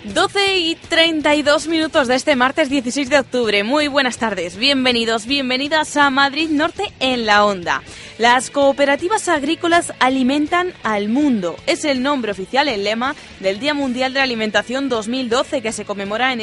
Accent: Spanish